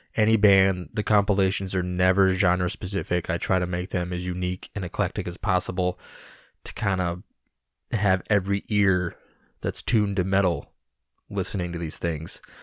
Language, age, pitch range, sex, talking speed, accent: English, 20-39, 90-110 Hz, male, 150 wpm, American